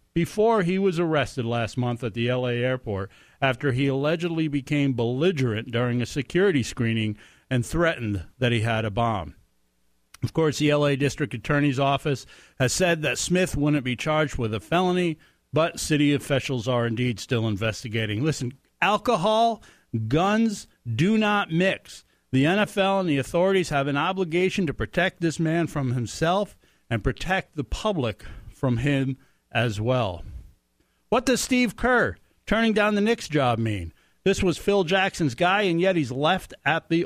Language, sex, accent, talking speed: English, male, American, 160 wpm